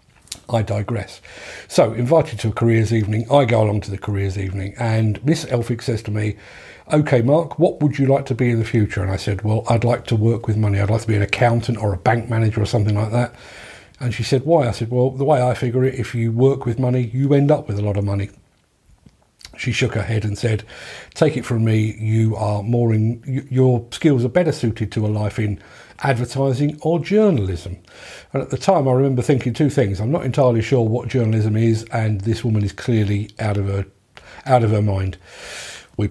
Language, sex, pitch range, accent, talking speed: English, male, 105-130 Hz, British, 225 wpm